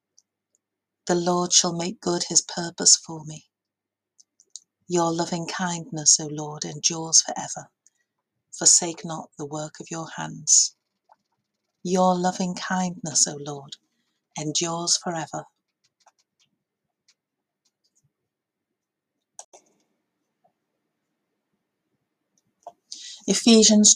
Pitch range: 165-205 Hz